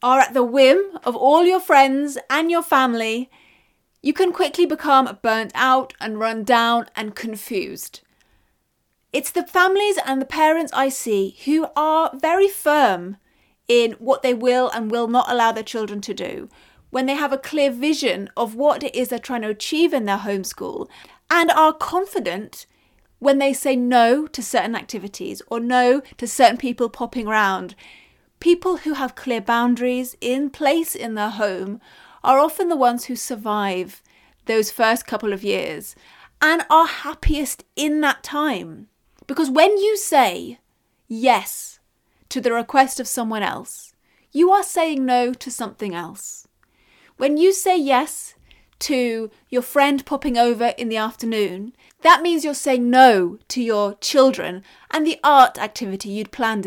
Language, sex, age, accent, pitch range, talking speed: English, female, 30-49, British, 230-295 Hz, 160 wpm